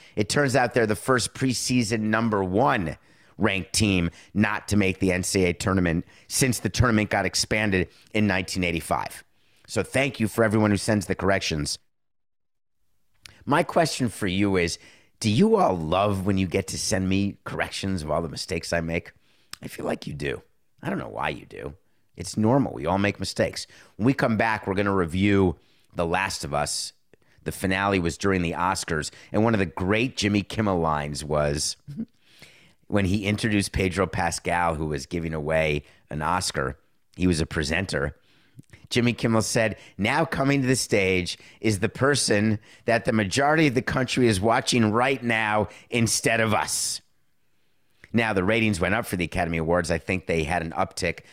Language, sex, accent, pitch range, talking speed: English, male, American, 90-110 Hz, 180 wpm